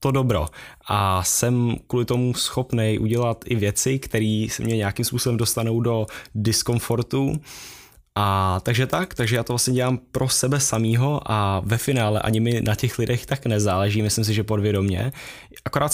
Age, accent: 10-29, native